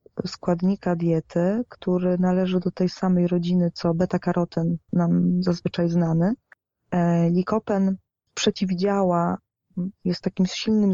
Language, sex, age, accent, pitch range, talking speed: Polish, female, 20-39, native, 170-190 Hz, 100 wpm